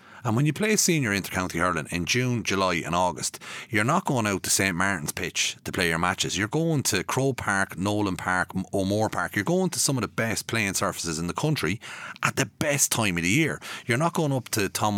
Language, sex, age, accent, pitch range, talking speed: English, male, 30-49, Irish, 95-125 Hz, 240 wpm